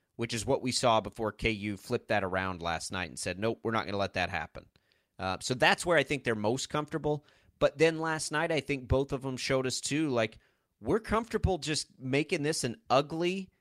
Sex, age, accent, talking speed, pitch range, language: male, 30-49, American, 225 wpm, 100-145 Hz, English